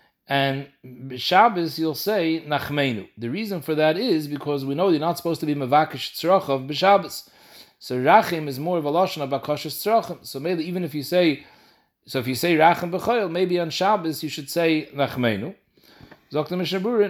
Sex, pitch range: male, 140-180 Hz